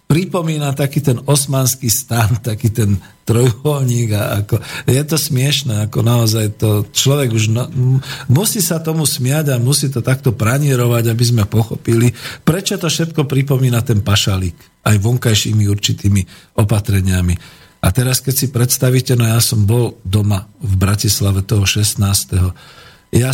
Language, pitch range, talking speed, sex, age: Slovak, 105-140 Hz, 145 wpm, male, 50-69